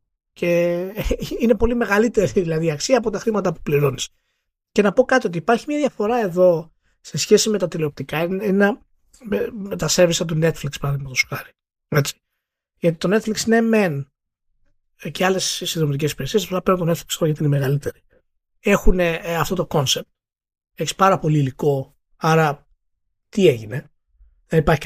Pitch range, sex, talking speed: 140-195 Hz, male, 150 wpm